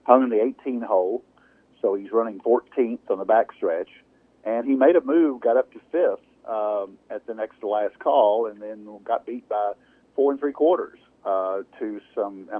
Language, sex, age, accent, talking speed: English, male, 50-69, American, 200 wpm